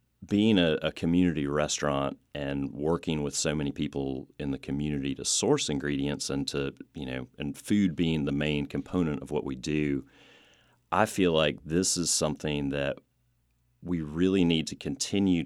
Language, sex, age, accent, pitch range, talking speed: English, male, 30-49, American, 70-80 Hz, 165 wpm